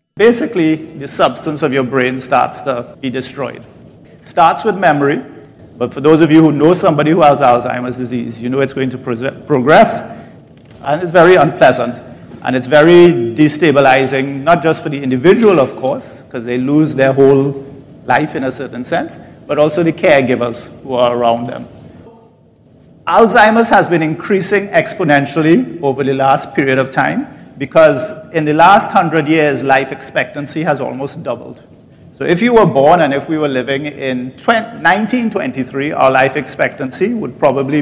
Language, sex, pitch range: English, male, 130-160 Hz